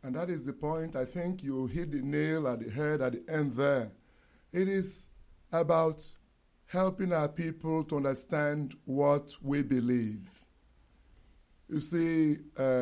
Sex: male